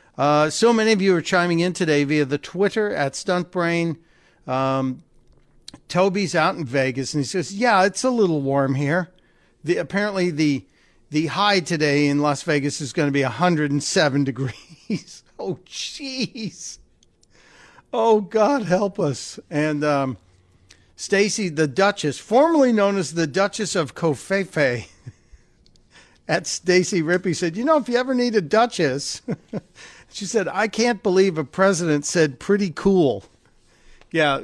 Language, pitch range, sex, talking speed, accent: English, 140-195 Hz, male, 145 wpm, American